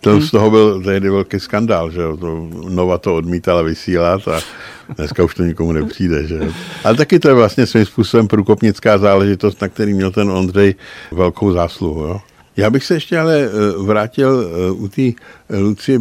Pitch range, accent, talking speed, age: 90-110 Hz, native, 170 wpm, 60-79